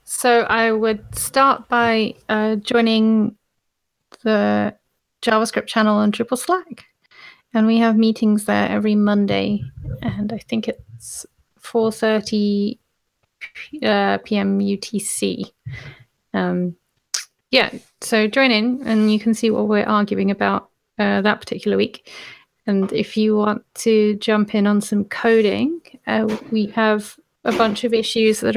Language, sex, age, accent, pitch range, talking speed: English, female, 30-49, British, 205-230 Hz, 130 wpm